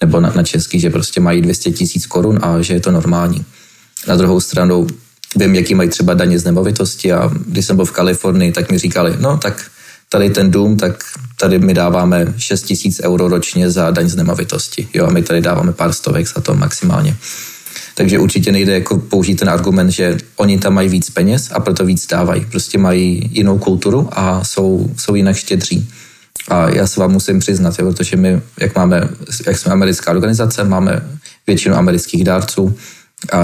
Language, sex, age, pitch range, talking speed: Slovak, male, 20-39, 90-100 Hz, 185 wpm